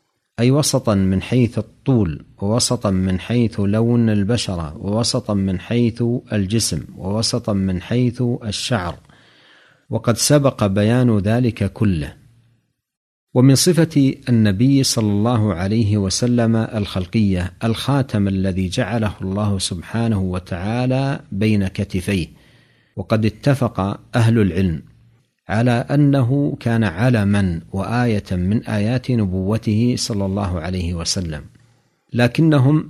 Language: Arabic